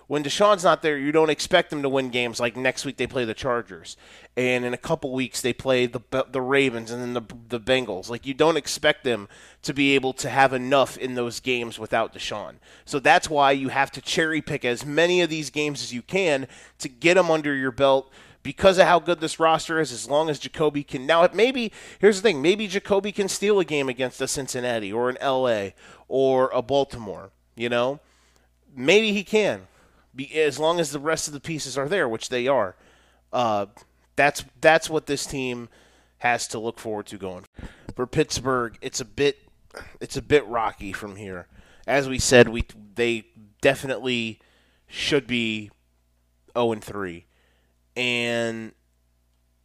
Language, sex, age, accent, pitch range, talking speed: English, male, 30-49, American, 115-155 Hz, 185 wpm